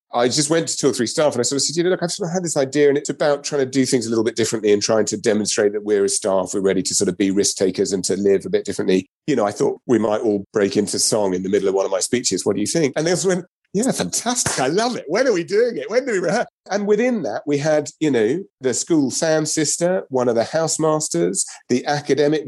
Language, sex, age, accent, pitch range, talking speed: English, male, 40-59, British, 115-170 Hz, 300 wpm